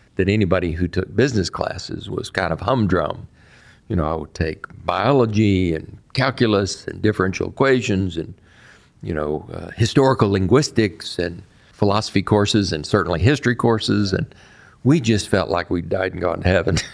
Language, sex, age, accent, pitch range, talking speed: English, male, 50-69, American, 90-110 Hz, 160 wpm